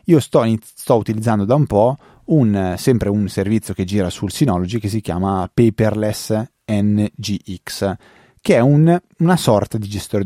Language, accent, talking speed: Italian, native, 165 wpm